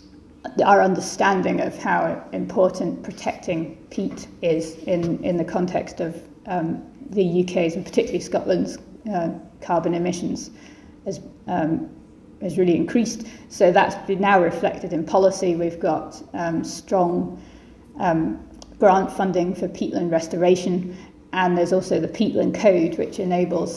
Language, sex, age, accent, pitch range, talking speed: English, female, 30-49, British, 170-195 Hz, 125 wpm